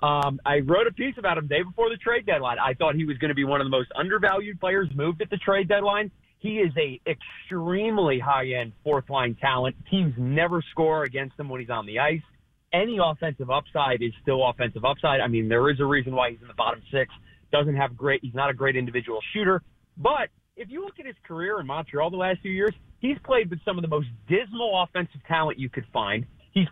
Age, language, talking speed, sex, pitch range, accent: 30-49, English, 235 wpm, male, 130-175 Hz, American